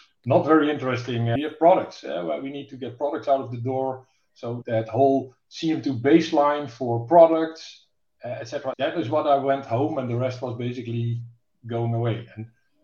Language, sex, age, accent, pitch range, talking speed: English, male, 50-69, Dutch, 120-150 Hz, 190 wpm